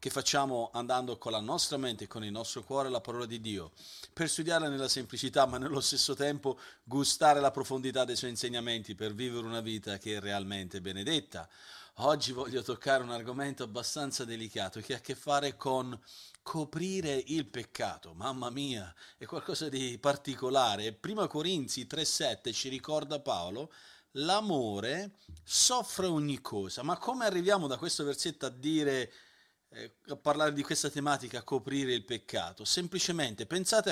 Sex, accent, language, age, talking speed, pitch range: male, native, Italian, 40-59, 155 wpm, 120-160 Hz